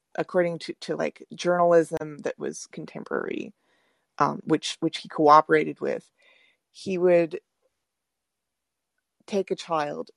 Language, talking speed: English, 110 wpm